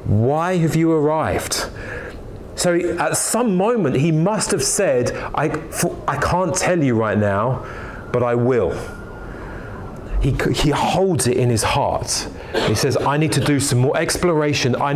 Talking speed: 165 wpm